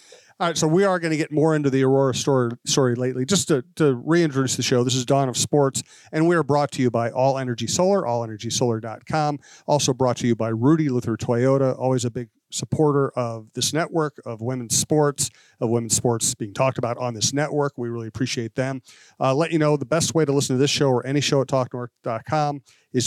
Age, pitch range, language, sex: 40-59, 120-145 Hz, English, male